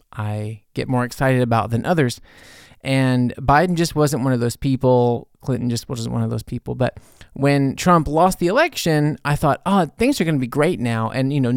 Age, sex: 20-39, male